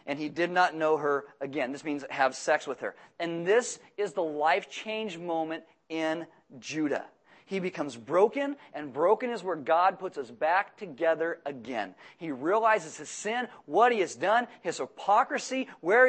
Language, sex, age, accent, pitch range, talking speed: English, male, 40-59, American, 175-255 Hz, 170 wpm